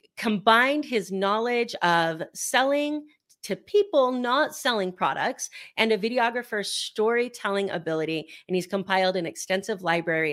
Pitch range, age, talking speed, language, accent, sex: 175-220 Hz, 30-49, 120 wpm, English, American, female